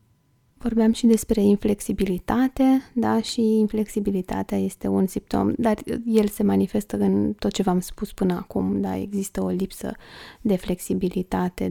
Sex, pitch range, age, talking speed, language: female, 175-215 Hz, 20-39, 140 wpm, Romanian